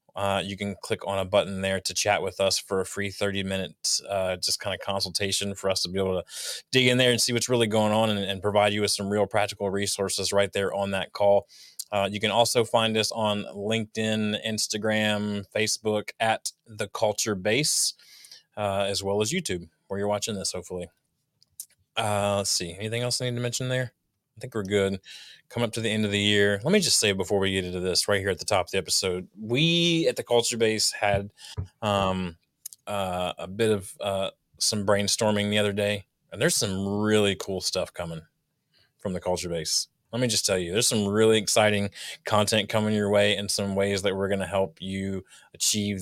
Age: 20-39